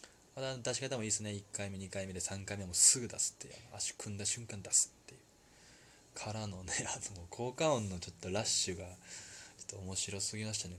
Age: 20-39